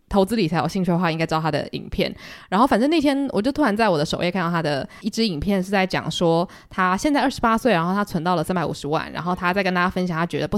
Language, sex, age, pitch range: Chinese, female, 20-39, 170-220 Hz